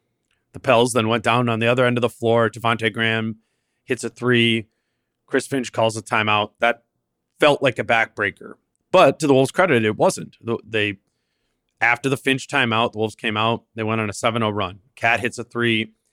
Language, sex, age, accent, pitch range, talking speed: English, male, 30-49, American, 110-125 Hz, 200 wpm